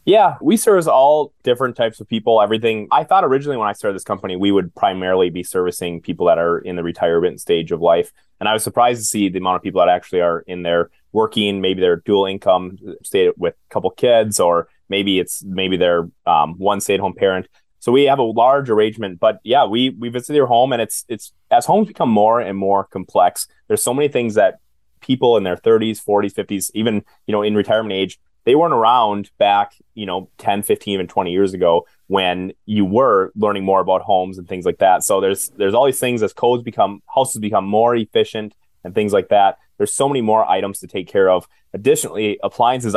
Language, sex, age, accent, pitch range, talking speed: English, male, 20-39, American, 95-110 Hz, 220 wpm